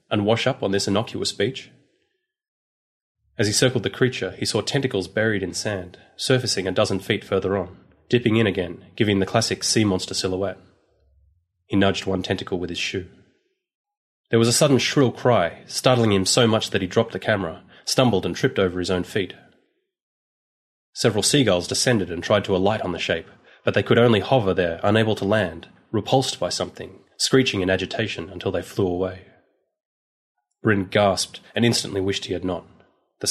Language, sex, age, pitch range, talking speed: English, male, 30-49, 90-115 Hz, 180 wpm